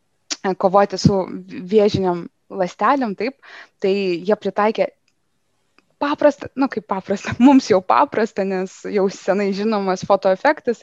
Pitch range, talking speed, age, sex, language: 190-235 Hz, 110 wpm, 20-39, female, English